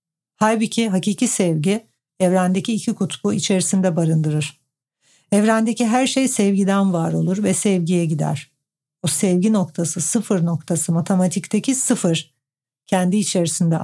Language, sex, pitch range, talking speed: Turkish, female, 165-205 Hz, 115 wpm